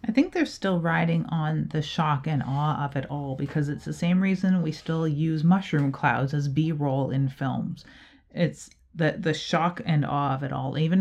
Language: English